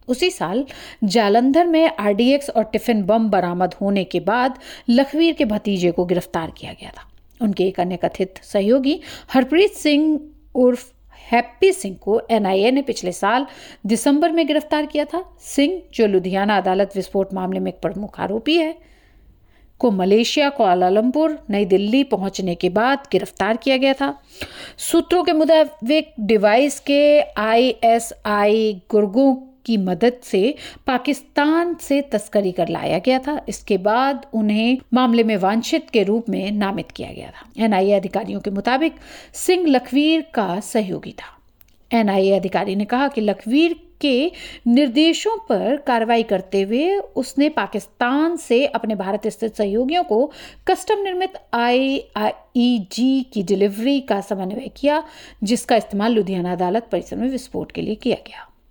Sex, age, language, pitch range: female, 50-69, English, 205-290 Hz